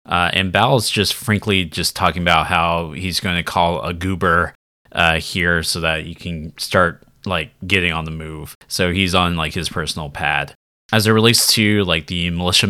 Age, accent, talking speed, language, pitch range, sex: 20-39, American, 200 wpm, English, 85-110 Hz, male